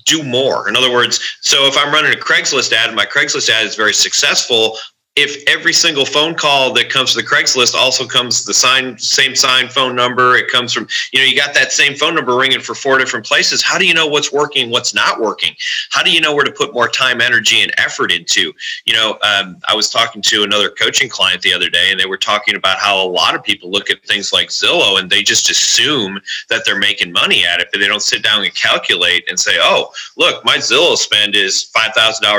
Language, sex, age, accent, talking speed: English, male, 30-49, American, 240 wpm